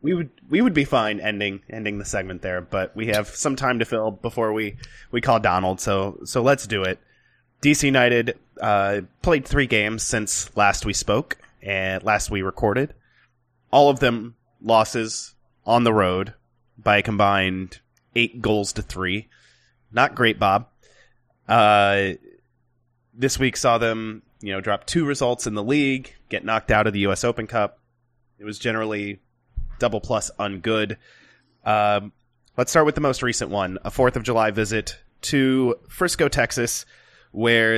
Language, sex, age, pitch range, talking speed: English, male, 20-39, 105-125 Hz, 165 wpm